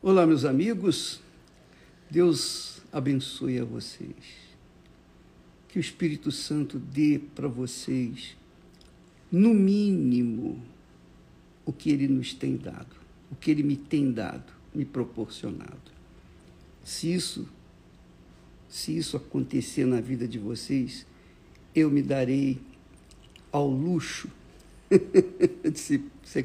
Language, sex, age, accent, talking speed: Portuguese, male, 60-79, Brazilian, 100 wpm